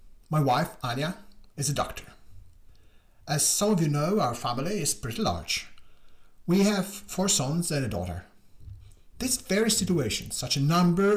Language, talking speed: English, 155 wpm